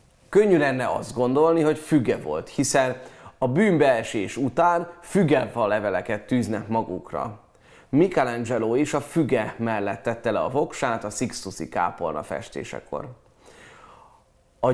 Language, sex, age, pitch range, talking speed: Hungarian, male, 30-49, 115-165 Hz, 120 wpm